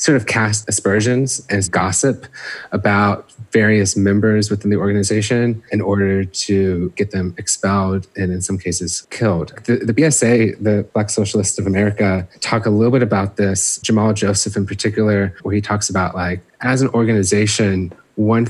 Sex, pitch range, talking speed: male, 95-110 Hz, 165 wpm